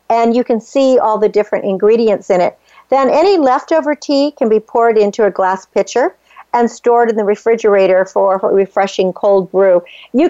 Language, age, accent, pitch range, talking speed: English, 50-69, American, 205-265 Hz, 185 wpm